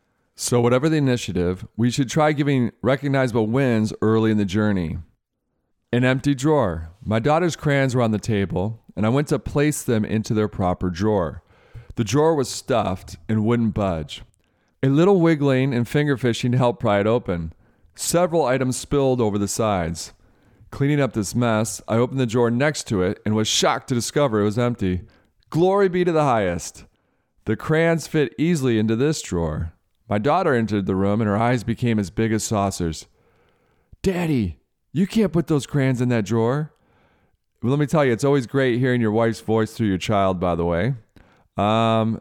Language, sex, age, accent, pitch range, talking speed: English, male, 40-59, American, 100-140 Hz, 180 wpm